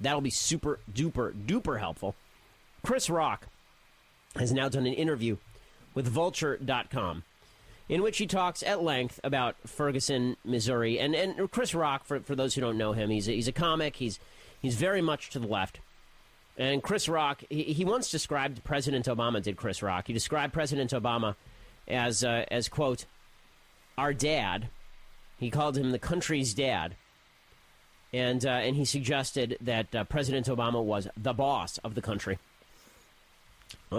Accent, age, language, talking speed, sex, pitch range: American, 40-59, English, 160 wpm, male, 115-155 Hz